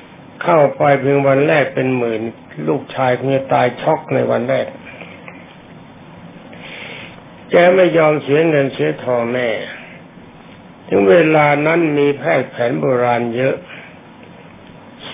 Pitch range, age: 125-150 Hz, 60-79